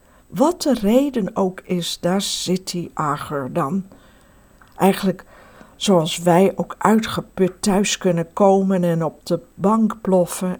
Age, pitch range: 60-79, 170-215 Hz